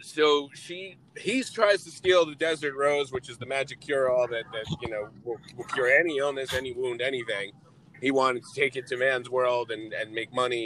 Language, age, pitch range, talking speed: English, 30-49, 135-180 Hz, 220 wpm